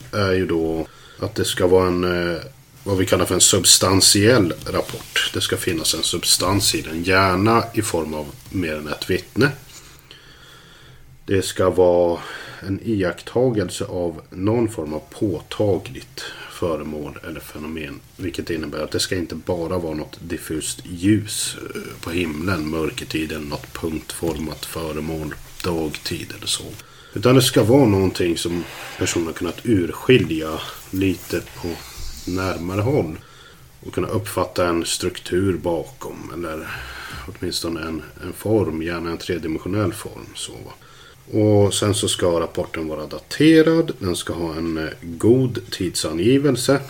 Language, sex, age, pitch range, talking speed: Swedish, male, 30-49, 80-105 Hz, 135 wpm